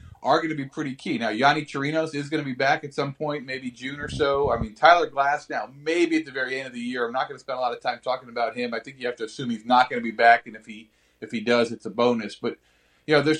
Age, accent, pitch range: 40-59, American, 125-155 Hz